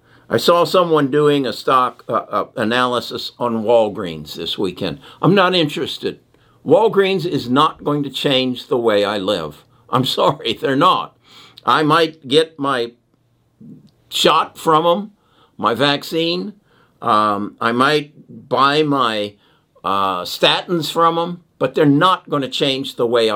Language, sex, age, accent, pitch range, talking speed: English, male, 60-79, American, 120-160 Hz, 145 wpm